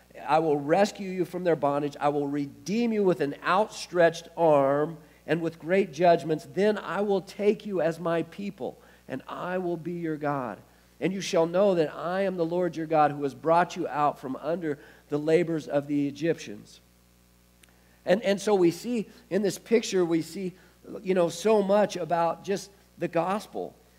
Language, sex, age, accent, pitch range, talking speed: English, male, 50-69, American, 140-195 Hz, 185 wpm